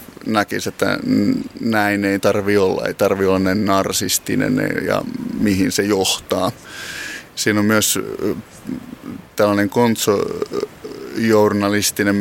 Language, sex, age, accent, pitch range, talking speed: Finnish, male, 20-39, native, 95-110 Hz, 95 wpm